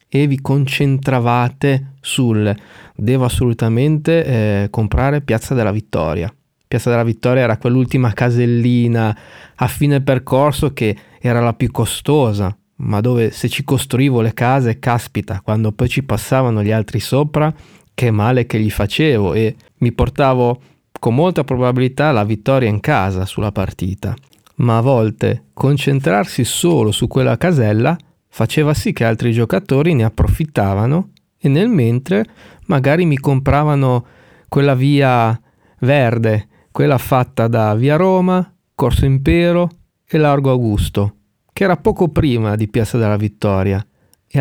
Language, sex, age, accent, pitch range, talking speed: Italian, male, 30-49, native, 110-140 Hz, 135 wpm